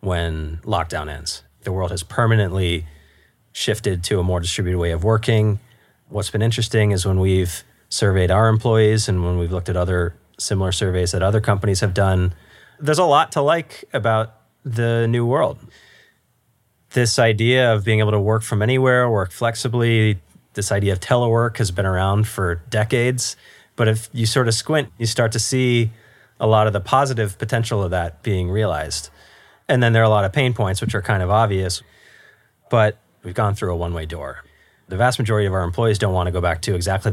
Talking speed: 195 wpm